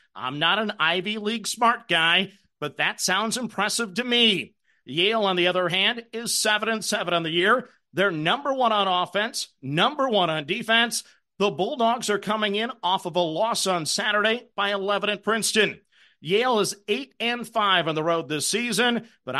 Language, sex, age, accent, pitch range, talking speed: English, male, 50-69, American, 180-225 Hz, 180 wpm